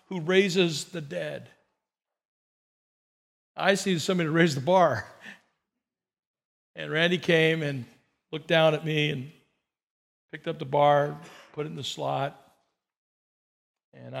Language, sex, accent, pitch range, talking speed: English, male, American, 155-215 Hz, 125 wpm